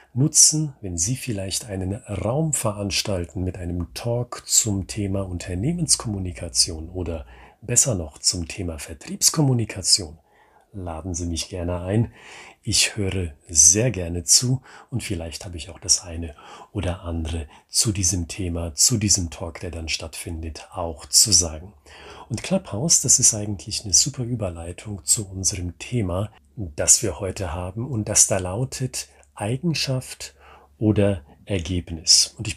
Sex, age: male, 40-59